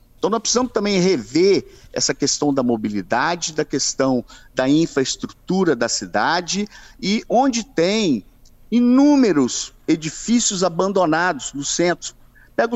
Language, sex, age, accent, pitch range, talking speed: Portuguese, male, 50-69, Brazilian, 140-195 Hz, 115 wpm